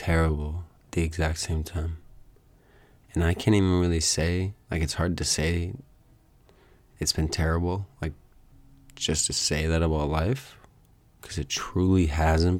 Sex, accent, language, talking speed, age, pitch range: male, American, English, 150 wpm, 20-39, 80-90 Hz